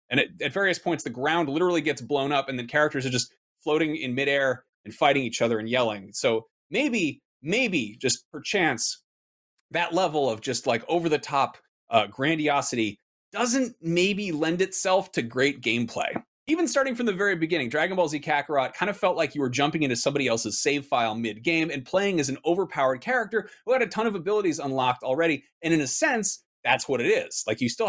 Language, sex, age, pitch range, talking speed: English, male, 30-49, 135-185 Hz, 205 wpm